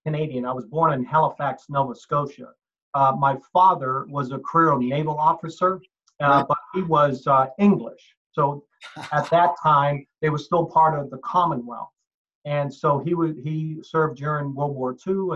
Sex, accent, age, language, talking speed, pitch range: male, American, 50-69, English, 170 wpm, 135-160 Hz